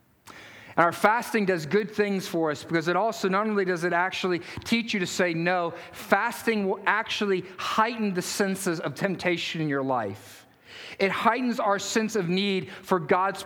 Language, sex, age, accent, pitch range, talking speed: English, male, 40-59, American, 160-215 Hz, 180 wpm